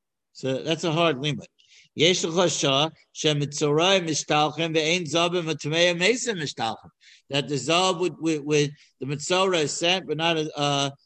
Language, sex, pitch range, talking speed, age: English, male, 140-170 Hz, 150 wpm, 60-79